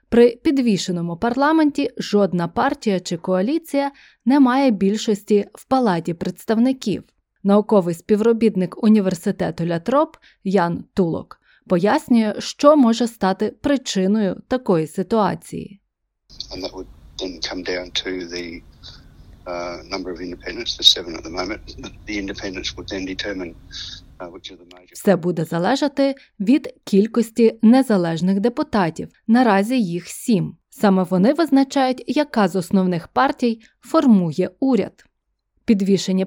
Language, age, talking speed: Ukrainian, 20-39, 90 wpm